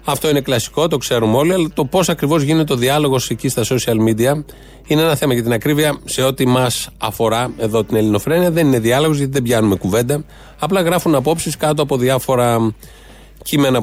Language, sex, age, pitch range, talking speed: Greek, male, 30-49, 120-160 Hz, 190 wpm